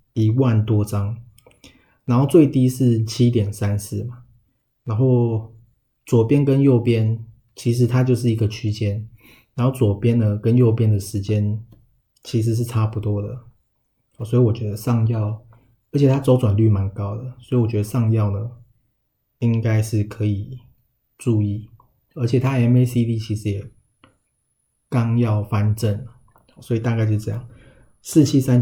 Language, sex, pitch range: Chinese, male, 105-120 Hz